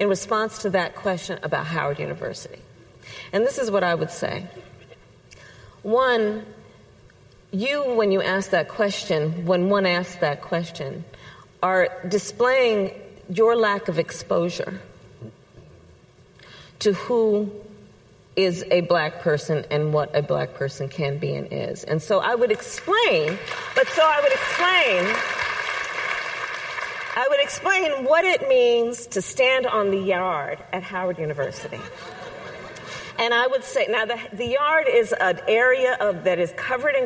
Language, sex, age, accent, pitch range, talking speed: English, female, 40-59, American, 170-240 Hz, 140 wpm